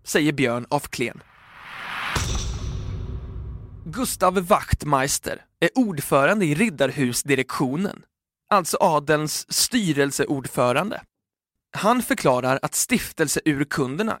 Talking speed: 70 wpm